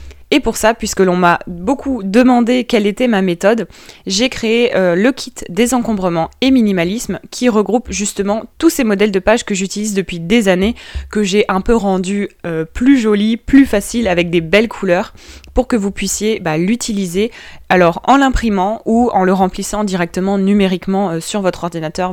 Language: French